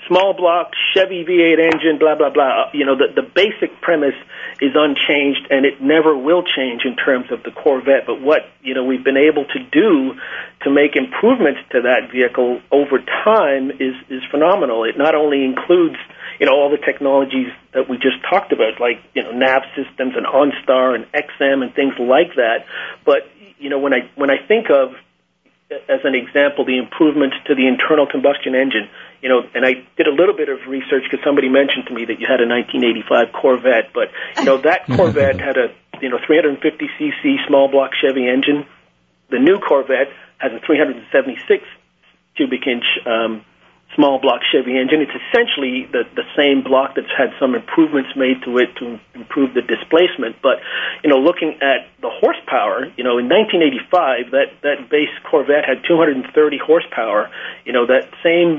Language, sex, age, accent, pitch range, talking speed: English, male, 40-59, American, 130-165 Hz, 185 wpm